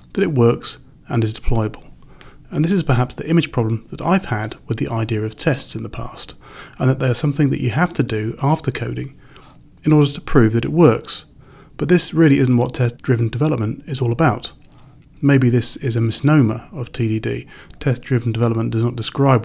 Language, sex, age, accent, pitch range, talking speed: English, male, 30-49, British, 115-150 Hz, 200 wpm